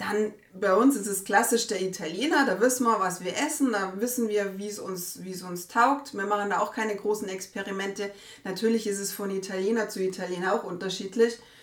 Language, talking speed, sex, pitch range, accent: German, 205 wpm, female, 190-235 Hz, German